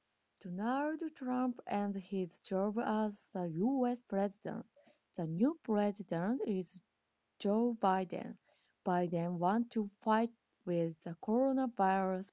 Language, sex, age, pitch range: Japanese, female, 20-39, 180-250 Hz